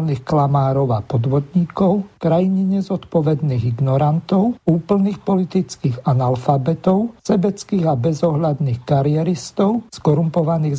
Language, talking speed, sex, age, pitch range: Slovak, 80 wpm, male, 50-69, 140-180 Hz